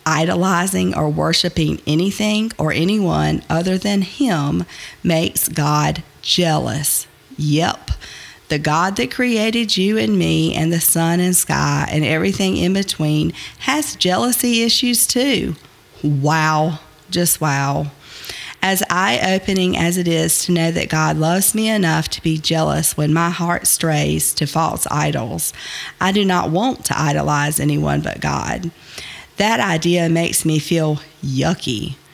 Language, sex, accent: English, female, American